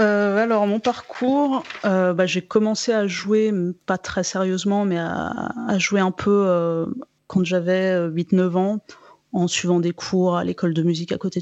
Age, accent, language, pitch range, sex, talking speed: 30-49, French, French, 175-210 Hz, female, 180 wpm